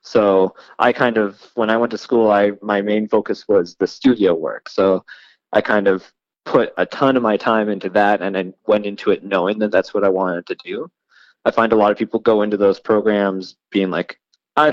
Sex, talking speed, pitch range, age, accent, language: male, 225 wpm, 95-120 Hz, 20-39, American, English